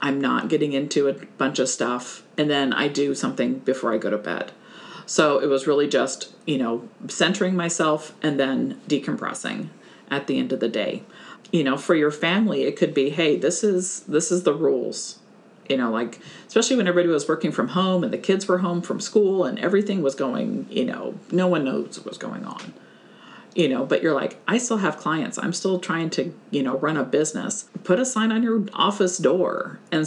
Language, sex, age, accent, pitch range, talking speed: English, female, 50-69, American, 155-205 Hz, 215 wpm